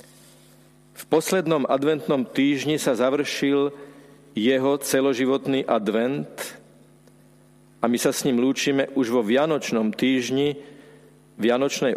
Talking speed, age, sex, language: 100 wpm, 50-69, male, Slovak